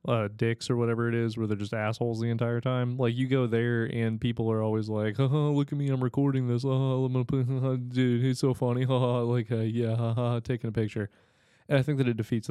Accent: American